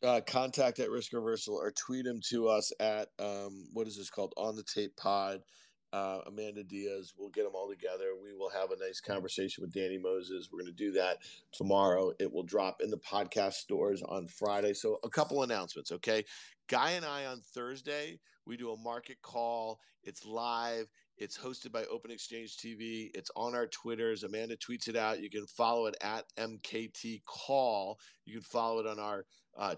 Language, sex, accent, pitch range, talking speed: English, male, American, 110-135 Hz, 195 wpm